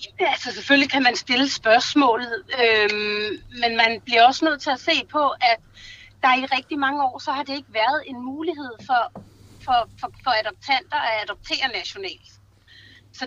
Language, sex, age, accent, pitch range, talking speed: Danish, female, 30-49, native, 230-310 Hz, 175 wpm